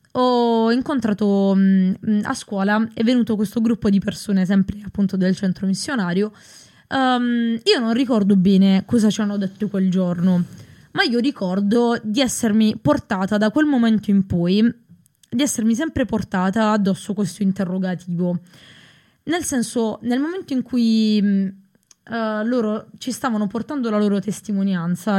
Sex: female